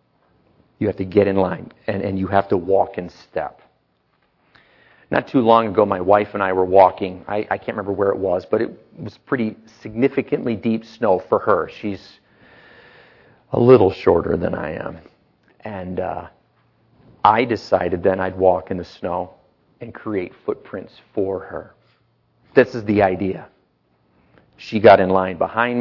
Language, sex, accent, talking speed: English, male, American, 165 wpm